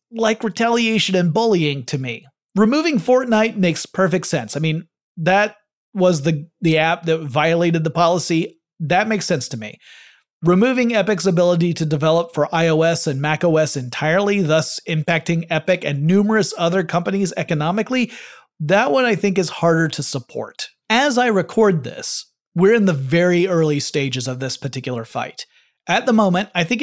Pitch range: 150-195 Hz